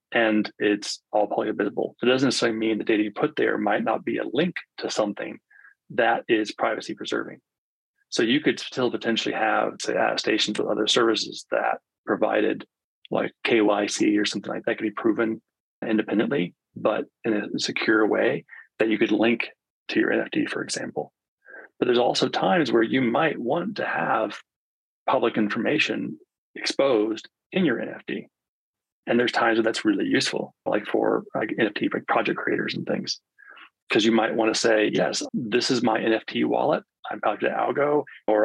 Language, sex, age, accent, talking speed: English, male, 30-49, American, 175 wpm